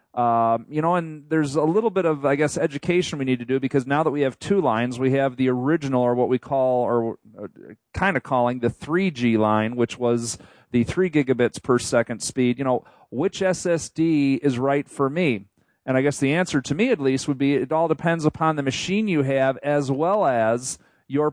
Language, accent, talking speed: English, American, 215 wpm